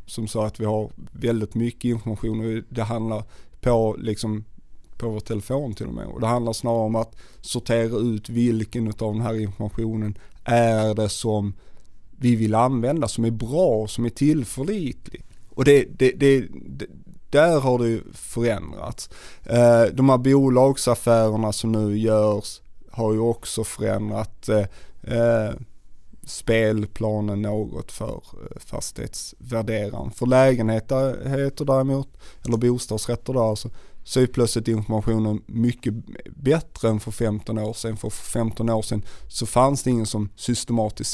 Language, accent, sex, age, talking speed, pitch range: Swedish, native, male, 30-49, 140 wpm, 110-125 Hz